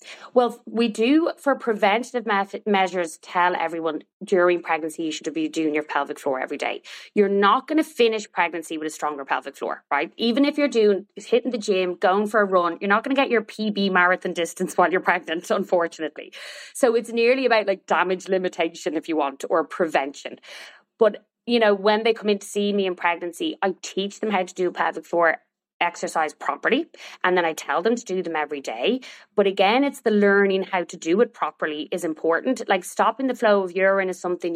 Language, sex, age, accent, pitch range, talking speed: English, female, 20-39, Irish, 175-220 Hz, 210 wpm